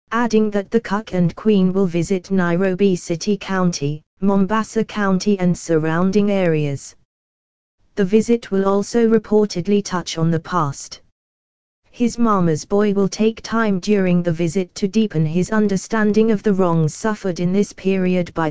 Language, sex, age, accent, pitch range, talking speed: English, female, 20-39, British, 170-210 Hz, 150 wpm